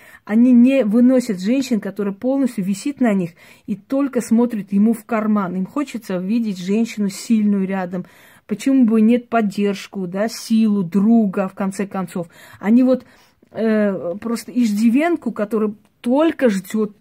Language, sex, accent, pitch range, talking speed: Russian, female, native, 200-245 Hz, 135 wpm